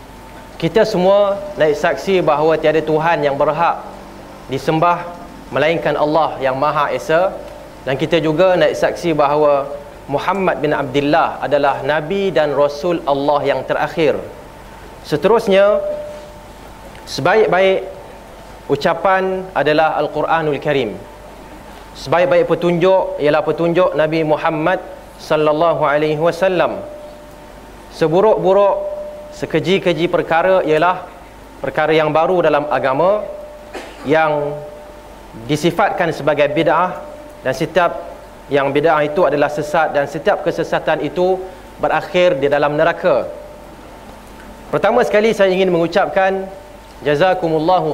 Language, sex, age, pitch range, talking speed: Malay, male, 30-49, 150-190 Hz, 100 wpm